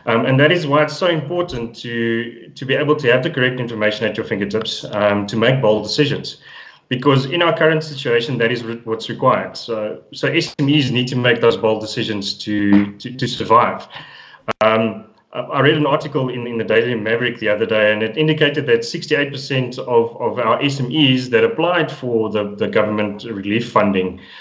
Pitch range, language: 110-140 Hz, English